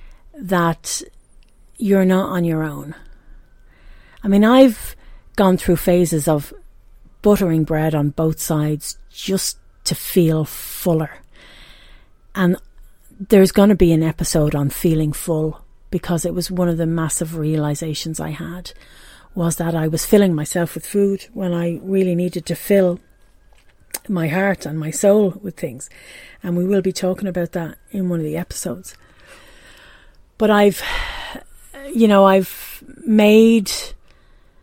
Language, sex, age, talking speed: English, female, 40-59, 140 wpm